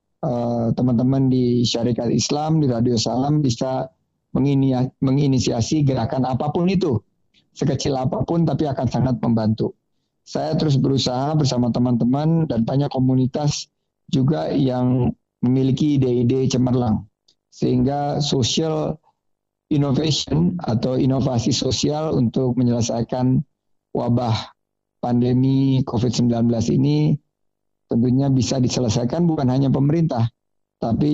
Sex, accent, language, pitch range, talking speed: male, native, Indonesian, 120-140 Hz, 95 wpm